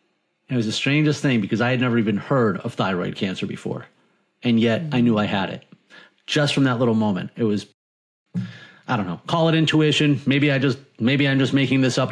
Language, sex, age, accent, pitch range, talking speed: English, male, 30-49, American, 115-145 Hz, 220 wpm